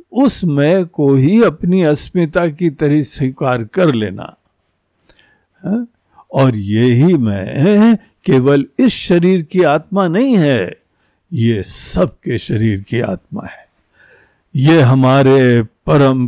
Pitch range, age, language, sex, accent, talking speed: 115-185 Hz, 60-79, Hindi, male, native, 120 wpm